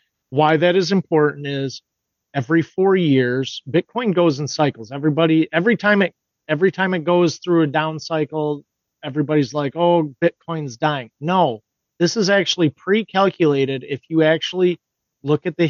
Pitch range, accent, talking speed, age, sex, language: 135-170 Hz, American, 155 wpm, 40-59, male, English